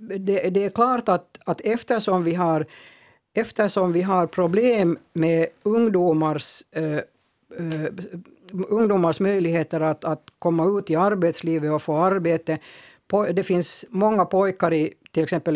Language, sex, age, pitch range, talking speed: Swedish, female, 60-79, 155-190 Hz, 120 wpm